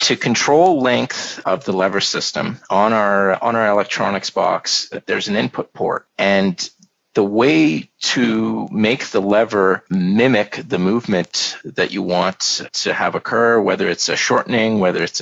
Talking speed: 150 wpm